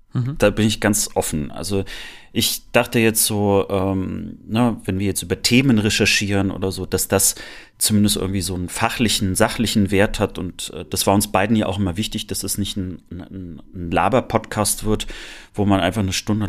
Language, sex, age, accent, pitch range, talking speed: German, male, 30-49, German, 95-110 Hz, 195 wpm